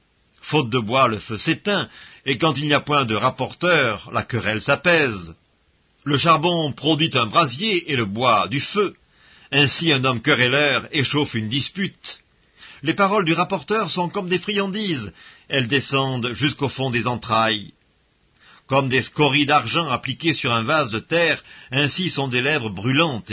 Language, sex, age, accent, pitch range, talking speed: English, male, 50-69, French, 120-160 Hz, 160 wpm